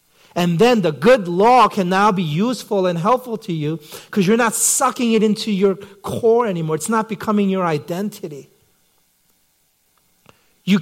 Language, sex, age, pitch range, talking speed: English, male, 40-59, 170-235 Hz, 155 wpm